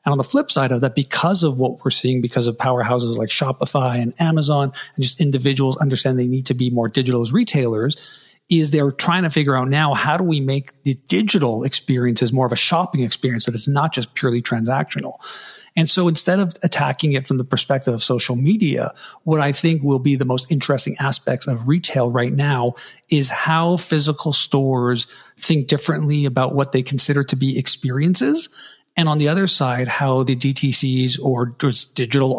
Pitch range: 130-155 Hz